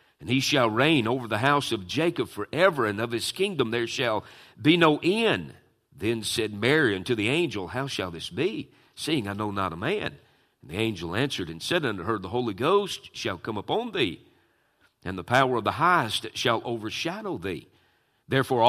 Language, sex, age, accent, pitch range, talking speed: English, male, 50-69, American, 105-145 Hz, 195 wpm